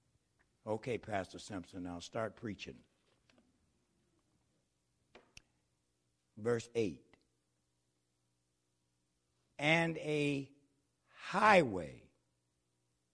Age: 60-79